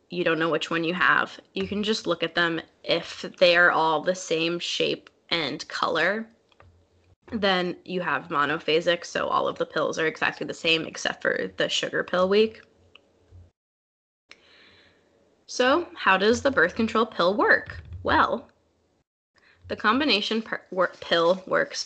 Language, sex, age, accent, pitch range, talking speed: English, female, 10-29, American, 165-210 Hz, 150 wpm